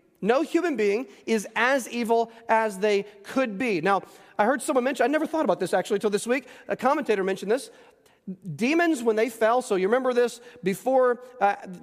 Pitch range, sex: 195-250 Hz, male